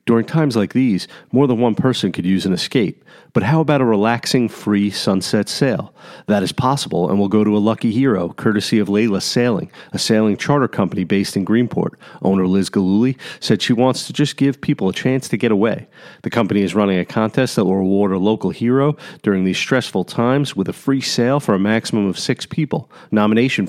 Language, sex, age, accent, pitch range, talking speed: English, male, 40-59, American, 95-125 Hz, 210 wpm